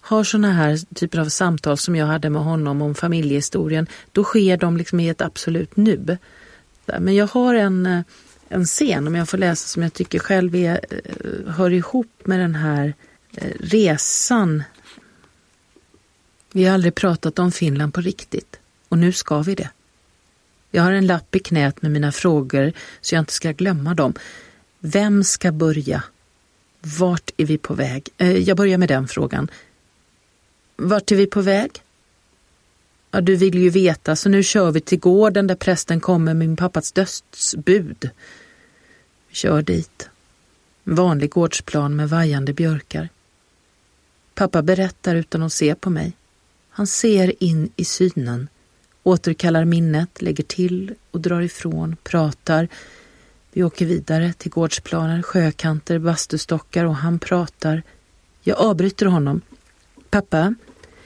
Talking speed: 145 wpm